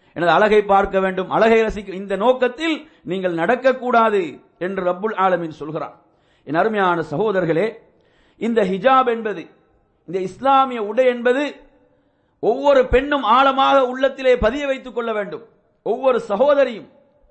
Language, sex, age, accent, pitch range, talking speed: English, male, 50-69, Indian, 210-270 Hz, 115 wpm